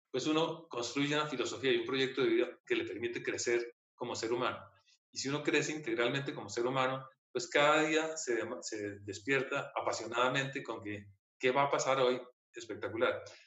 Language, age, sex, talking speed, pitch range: Spanish, 30-49, male, 180 wpm, 125-160 Hz